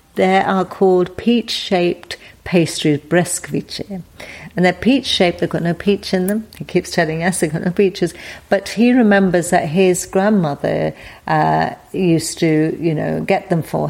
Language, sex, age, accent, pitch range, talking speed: English, female, 50-69, British, 155-185 Hz, 170 wpm